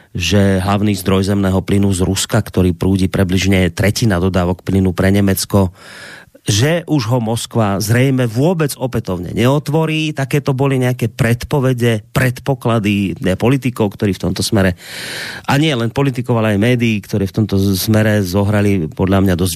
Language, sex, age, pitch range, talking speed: Slovak, male, 30-49, 95-130 Hz, 150 wpm